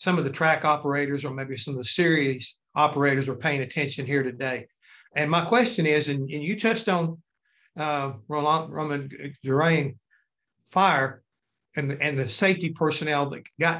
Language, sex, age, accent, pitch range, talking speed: English, male, 60-79, American, 140-170 Hz, 170 wpm